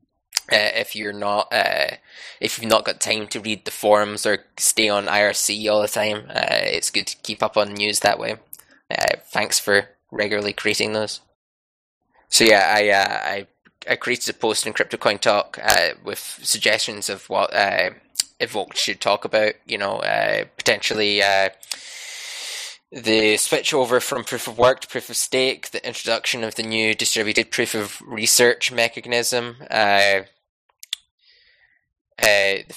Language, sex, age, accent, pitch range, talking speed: English, male, 10-29, British, 105-120 Hz, 160 wpm